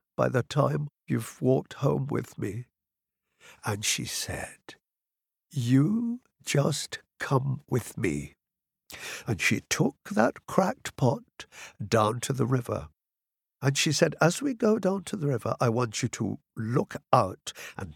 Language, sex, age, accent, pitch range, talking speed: English, male, 60-79, British, 115-165 Hz, 145 wpm